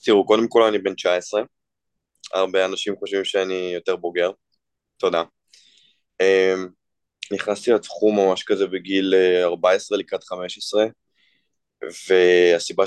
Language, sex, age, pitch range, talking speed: Hebrew, male, 20-39, 95-125 Hz, 105 wpm